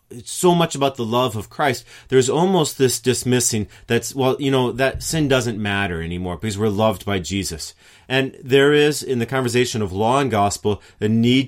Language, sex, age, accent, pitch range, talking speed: English, male, 30-49, American, 90-130 Hz, 200 wpm